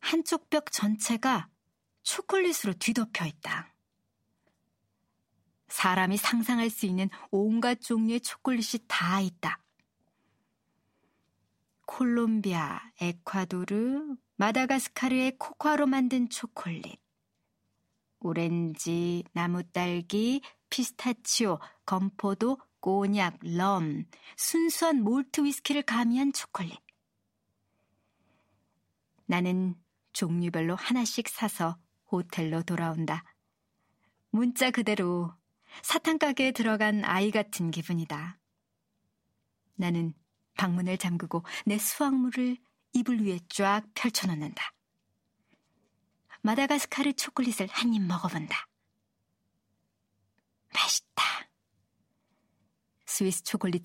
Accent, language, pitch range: native, Korean, 175-245 Hz